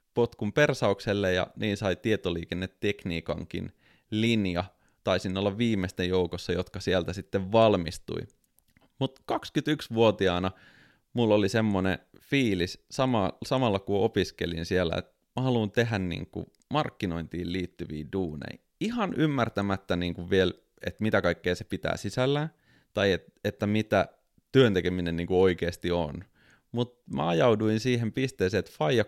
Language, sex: Finnish, male